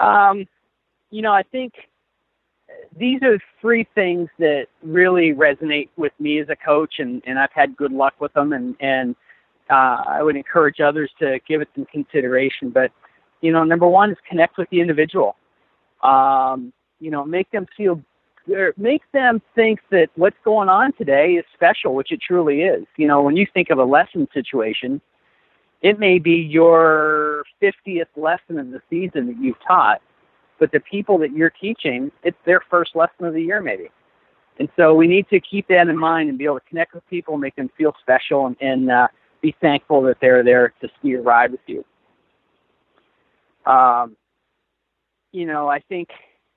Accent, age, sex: American, 50-69, male